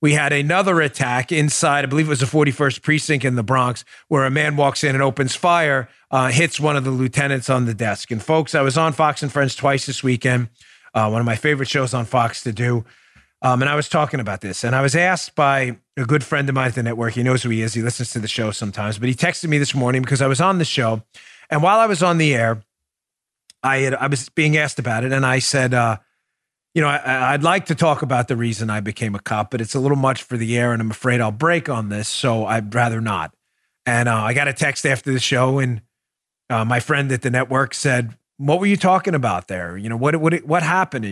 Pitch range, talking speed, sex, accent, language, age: 115-150 Hz, 255 wpm, male, American, English, 40-59